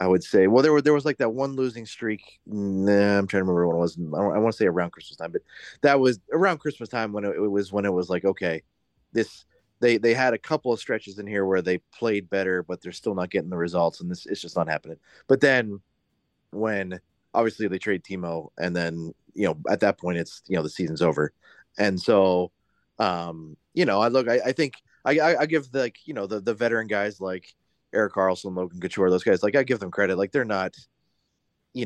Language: English